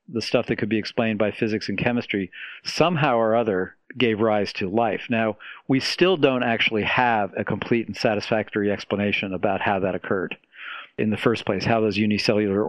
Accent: American